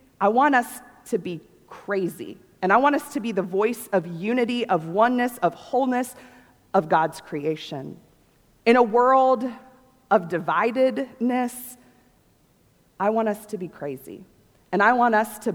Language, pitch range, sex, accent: English, 170-235 Hz, female, American